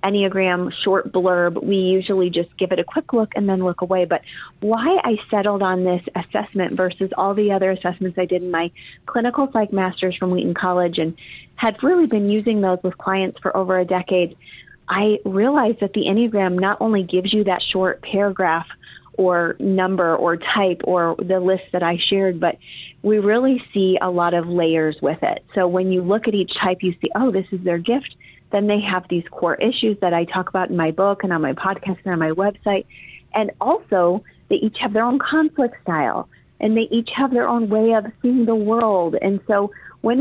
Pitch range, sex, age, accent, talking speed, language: 180-220 Hz, female, 30-49, American, 205 wpm, English